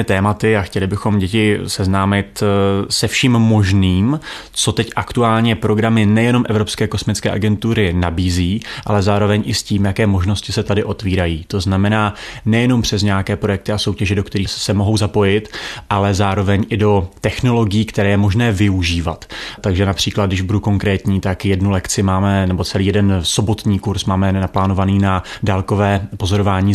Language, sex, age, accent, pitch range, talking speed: Czech, male, 30-49, native, 95-105 Hz, 155 wpm